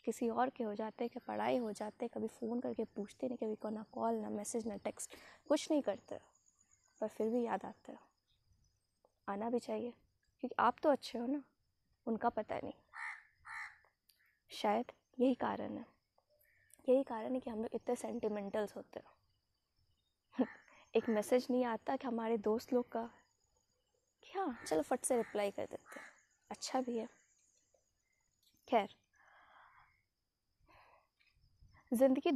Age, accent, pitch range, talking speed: 20-39, native, 220-255 Hz, 145 wpm